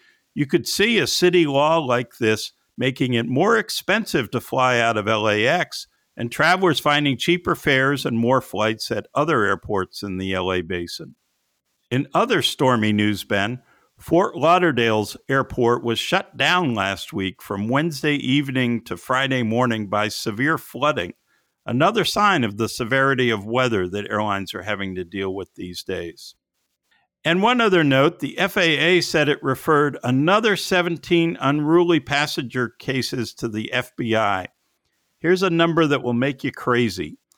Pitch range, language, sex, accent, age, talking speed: 110-150 Hz, English, male, American, 50-69, 155 wpm